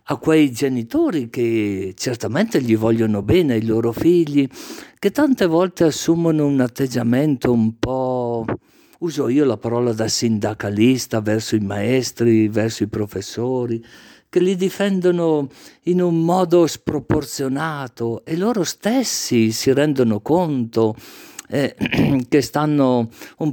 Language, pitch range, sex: Italian, 115-160 Hz, male